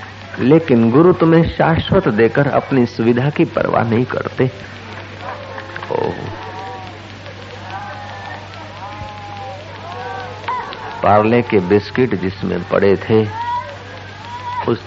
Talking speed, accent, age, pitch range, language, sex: 75 wpm, native, 50-69, 100-120 Hz, Hindi, male